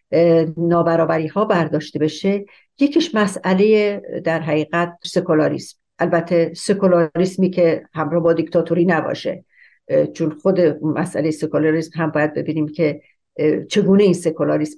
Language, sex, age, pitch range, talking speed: Persian, female, 60-79, 160-190 Hz, 110 wpm